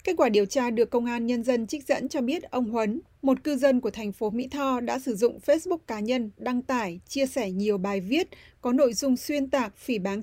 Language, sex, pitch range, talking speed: Vietnamese, female, 225-275 Hz, 250 wpm